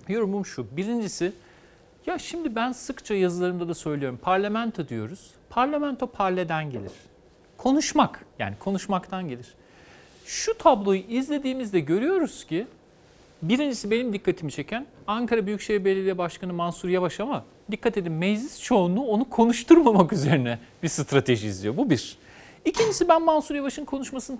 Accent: native